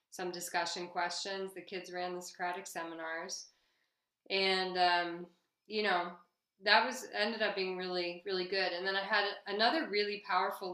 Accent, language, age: American, English, 20-39